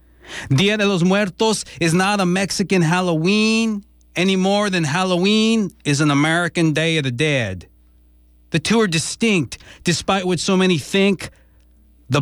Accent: American